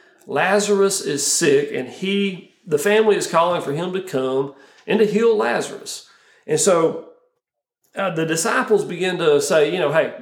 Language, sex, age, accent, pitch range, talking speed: English, male, 40-59, American, 145-210 Hz, 160 wpm